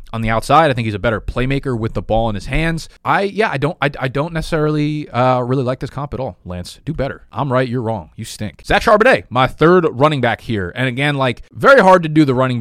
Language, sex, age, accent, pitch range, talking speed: English, male, 20-39, American, 110-130 Hz, 260 wpm